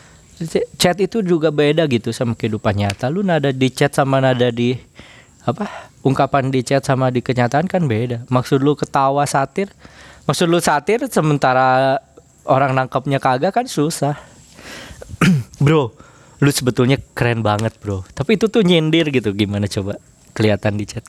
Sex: male